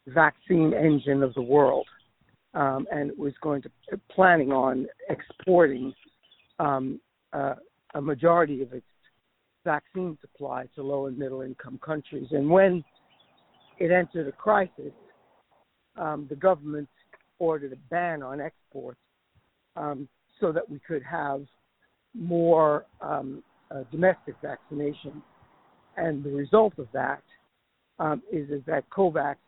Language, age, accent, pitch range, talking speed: English, 60-79, American, 135-165 Hz, 130 wpm